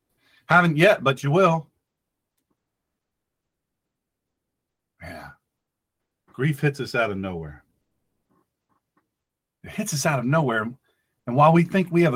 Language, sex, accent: English, male, American